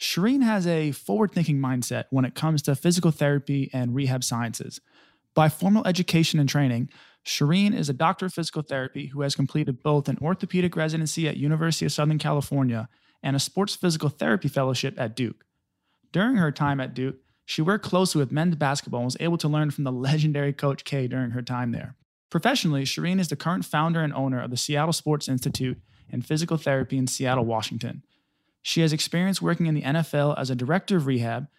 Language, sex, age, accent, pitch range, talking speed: English, male, 20-39, American, 130-165 Hz, 195 wpm